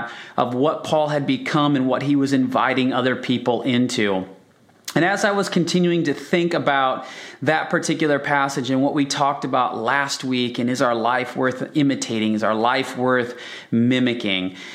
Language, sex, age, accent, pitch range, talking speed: English, male, 30-49, American, 120-145 Hz, 170 wpm